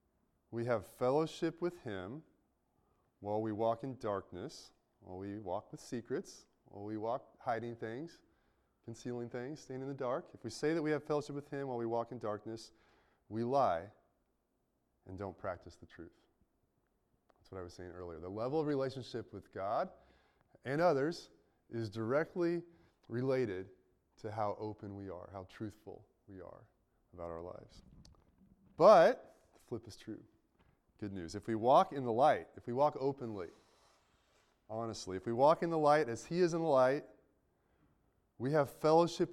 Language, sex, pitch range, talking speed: English, male, 100-145 Hz, 165 wpm